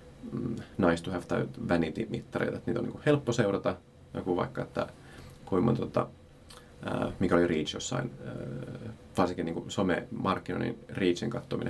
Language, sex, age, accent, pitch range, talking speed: Finnish, male, 30-49, native, 85-115 Hz, 110 wpm